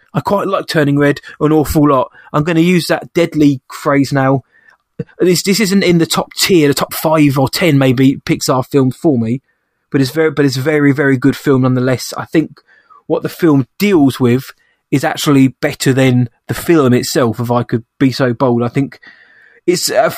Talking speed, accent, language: 195 wpm, British, English